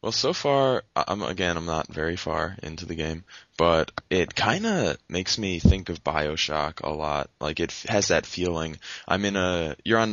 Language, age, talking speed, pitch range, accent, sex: English, 20-39, 200 wpm, 75-85 Hz, American, male